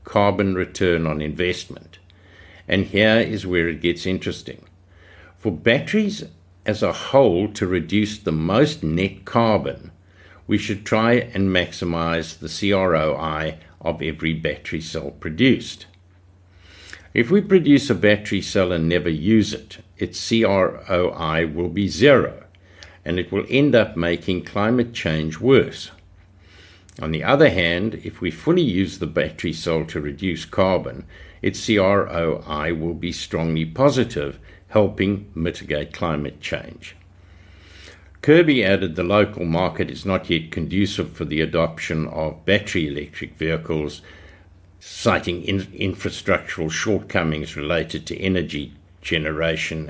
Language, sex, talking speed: English, male, 125 wpm